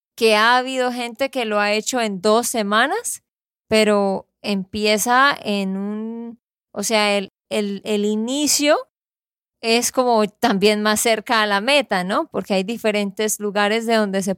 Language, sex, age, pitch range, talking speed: Spanish, female, 20-39, 215-260 Hz, 150 wpm